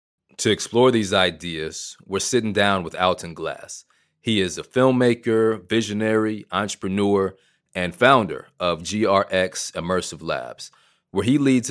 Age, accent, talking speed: 30-49, American, 130 wpm